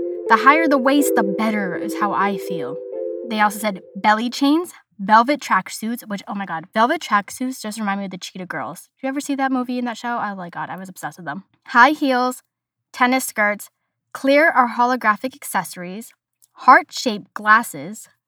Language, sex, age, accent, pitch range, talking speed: English, female, 10-29, American, 200-260 Hz, 185 wpm